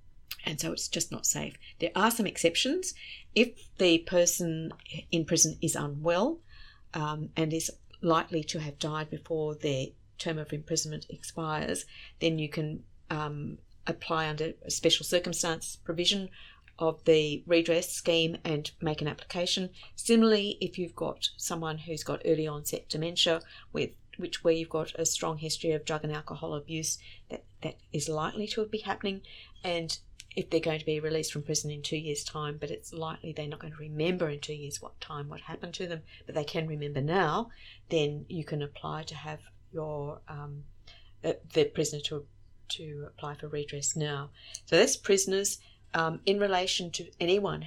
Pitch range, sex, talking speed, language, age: 150-175 Hz, female, 175 wpm, English, 30-49